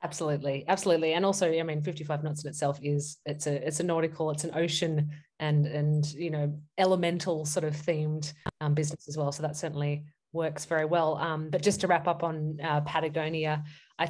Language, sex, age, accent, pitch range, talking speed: English, female, 20-39, Australian, 145-165 Hz, 200 wpm